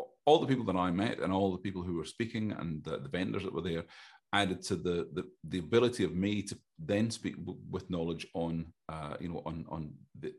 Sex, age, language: male, 40-59, English